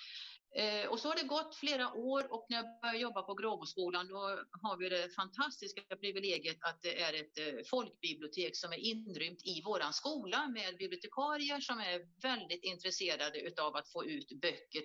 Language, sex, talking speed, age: Swedish, female, 165 wpm, 40-59